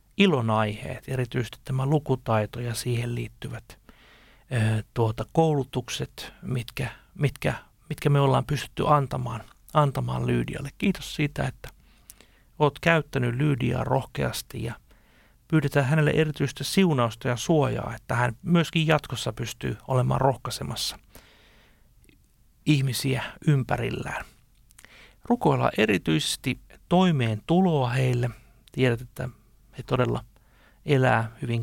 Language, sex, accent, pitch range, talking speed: Finnish, male, native, 115-145 Hz, 100 wpm